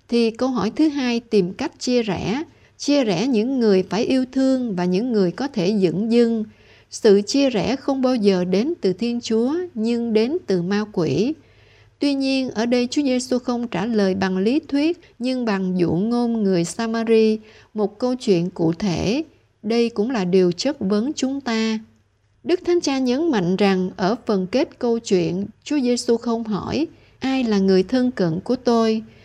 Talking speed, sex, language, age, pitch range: 185 wpm, female, Vietnamese, 60-79, 195-250 Hz